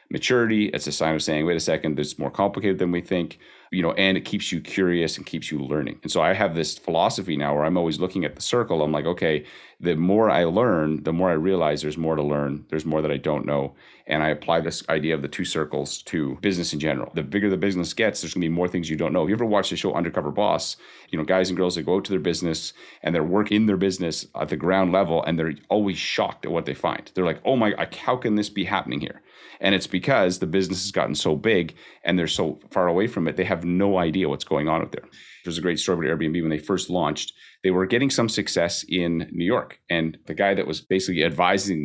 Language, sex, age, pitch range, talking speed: English, male, 30-49, 80-95 Hz, 265 wpm